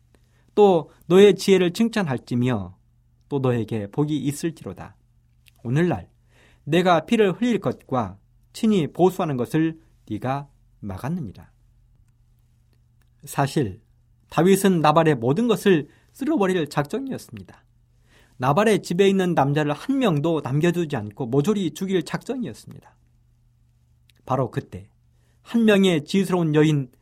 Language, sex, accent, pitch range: Korean, male, native, 115-170 Hz